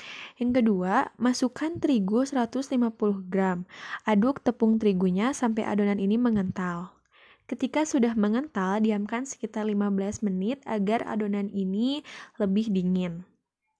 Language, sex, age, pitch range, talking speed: Indonesian, female, 10-29, 200-245 Hz, 110 wpm